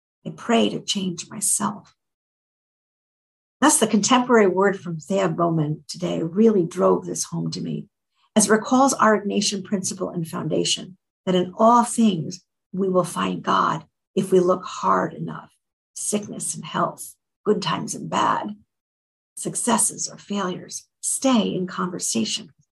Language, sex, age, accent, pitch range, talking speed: English, female, 50-69, American, 180-215 Hz, 145 wpm